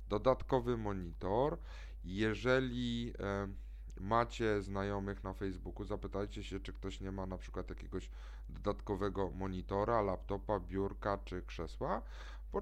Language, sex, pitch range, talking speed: Polish, male, 90-110 Hz, 110 wpm